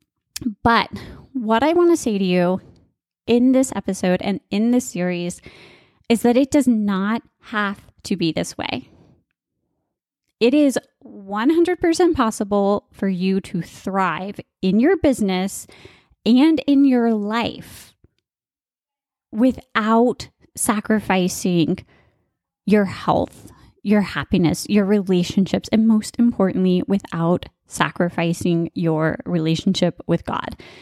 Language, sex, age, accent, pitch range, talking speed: English, female, 20-39, American, 185-240 Hz, 110 wpm